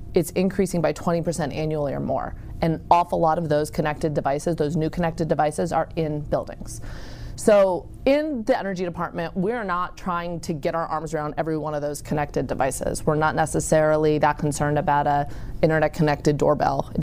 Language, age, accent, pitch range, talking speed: English, 30-49, American, 150-175 Hz, 180 wpm